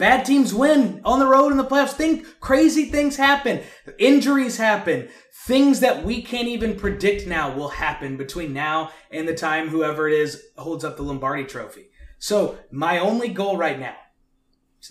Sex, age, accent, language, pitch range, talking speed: male, 20-39, American, English, 155-240 Hz, 175 wpm